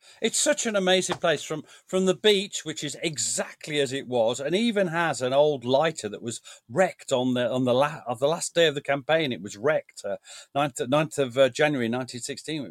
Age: 40-59